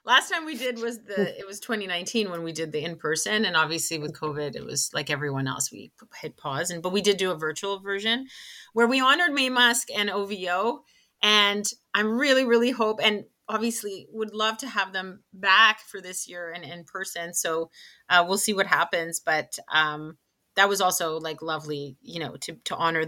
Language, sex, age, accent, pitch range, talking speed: English, female, 30-49, American, 165-220 Hz, 205 wpm